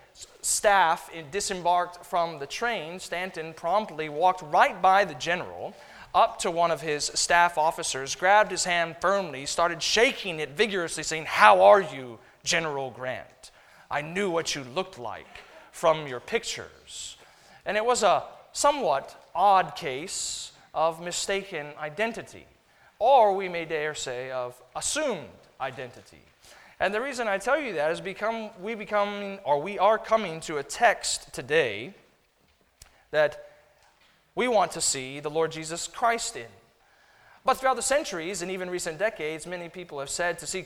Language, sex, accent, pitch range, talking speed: English, male, American, 155-200 Hz, 150 wpm